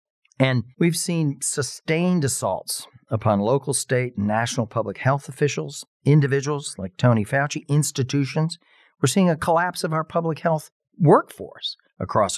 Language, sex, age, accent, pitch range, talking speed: English, male, 40-59, American, 110-155 Hz, 135 wpm